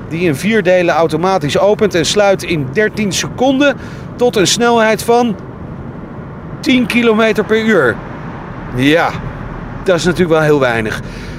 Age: 40-59